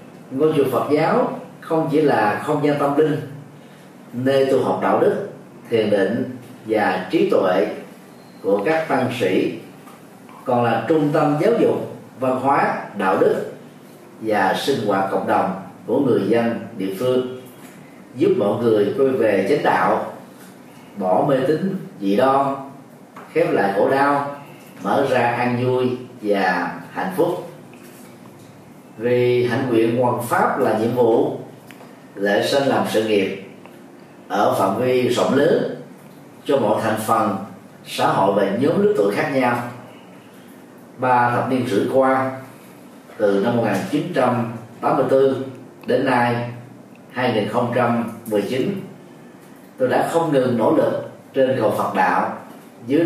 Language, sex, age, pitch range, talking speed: Vietnamese, male, 30-49, 115-140 Hz, 135 wpm